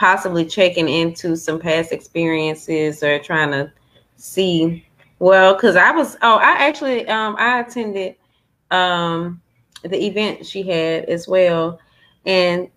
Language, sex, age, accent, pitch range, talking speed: English, female, 20-39, American, 155-180 Hz, 130 wpm